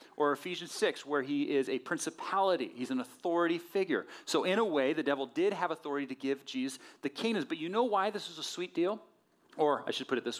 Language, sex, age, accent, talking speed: English, male, 40-59, American, 235 wpm